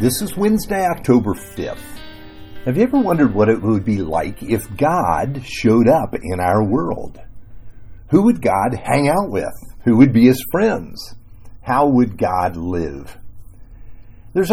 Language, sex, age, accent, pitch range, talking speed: English, male, 50-69, American, 105-140 Hz, 155 wpm